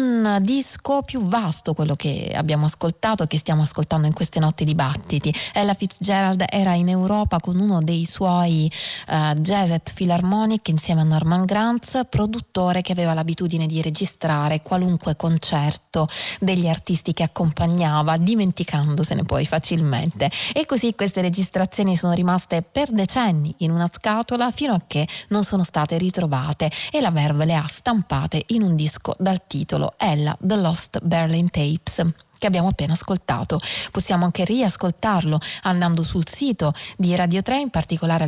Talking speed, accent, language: 155 wpm, native, Italian